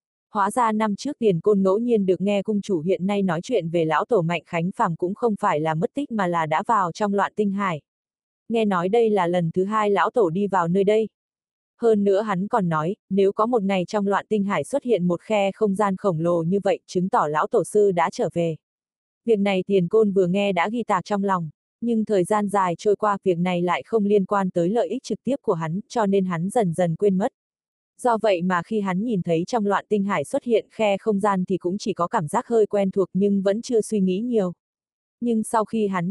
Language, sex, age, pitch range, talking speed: Vietnamese, female, 20-39, 180-220 Hz, 255 wpm